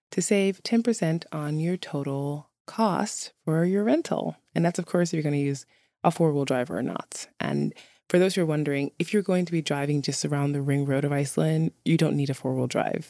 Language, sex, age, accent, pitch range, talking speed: English, female, 20-39, American, 140-170 Hz, 225 wpm